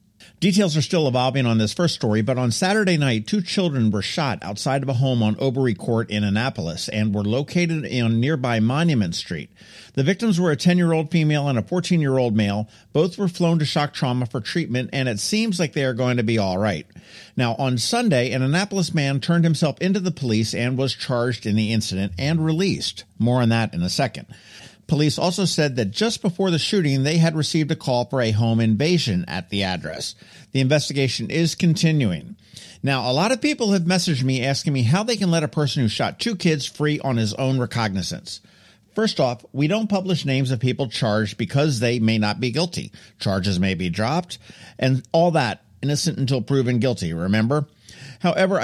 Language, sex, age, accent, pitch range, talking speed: English, male, 50-69, American, 115-165 Hz, 200 wpm